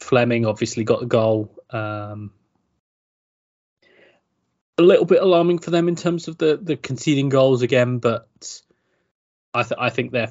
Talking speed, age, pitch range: 150 wpm, 20-39, 110-125 Hz